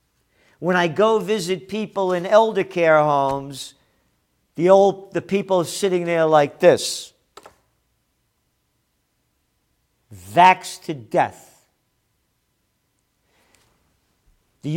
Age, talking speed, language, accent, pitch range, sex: 50-69, 85 wpm, English, American, 145-190 Hz, male